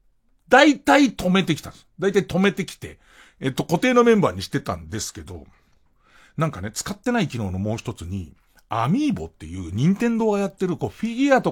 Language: Japanese